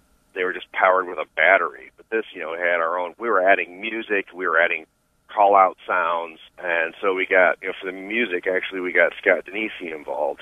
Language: English